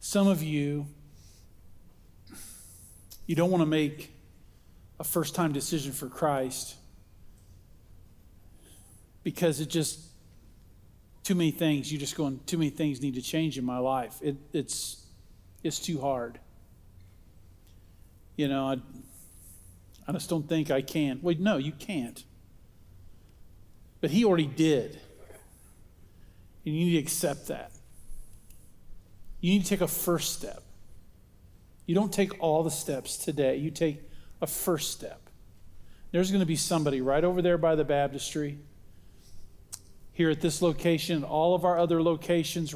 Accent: American